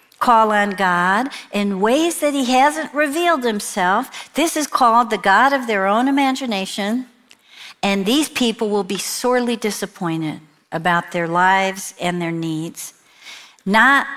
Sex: female